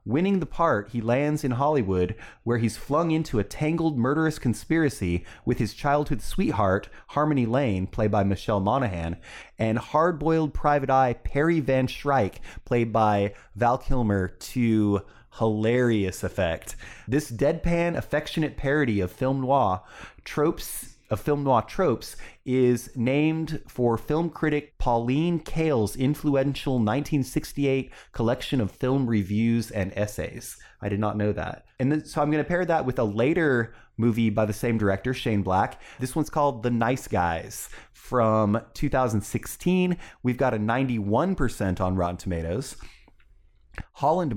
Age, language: 30-49, English